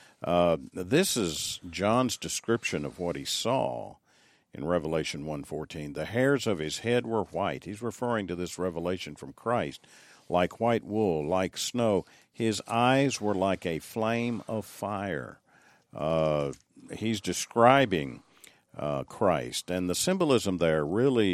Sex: male